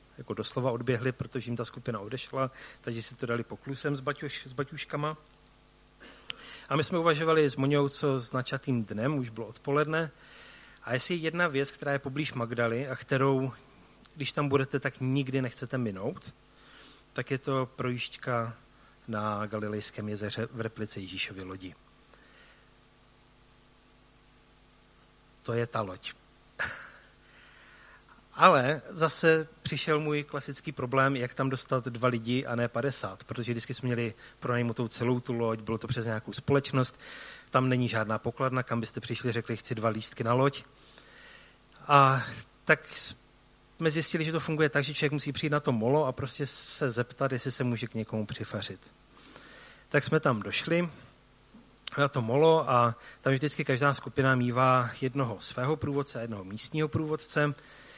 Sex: male